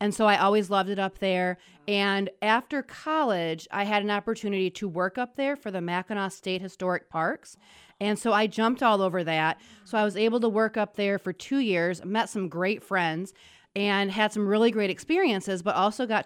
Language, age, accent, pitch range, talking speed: English, 30-49, American, 185-220 Hz, 205 wpm